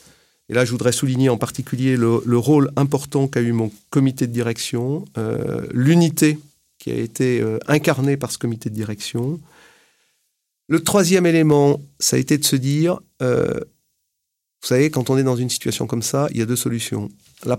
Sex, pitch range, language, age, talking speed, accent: male, 120-145 Hz, French, 40-59, 190 wpm, French